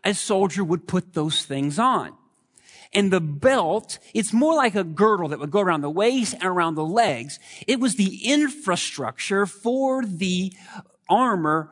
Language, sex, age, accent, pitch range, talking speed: English, male, 40-59, American, 175-240 Hz, 165 wpm